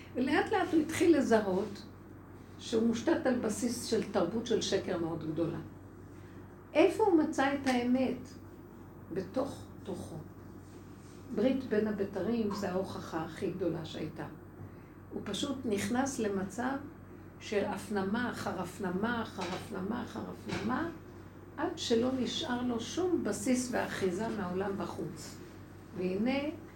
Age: 60-79